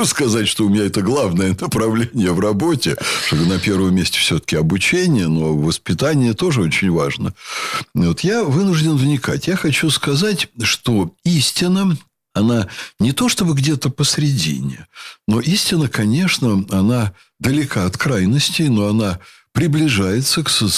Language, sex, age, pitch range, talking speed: Russian, male, 60-79, 105-150 Hz, 130 wpm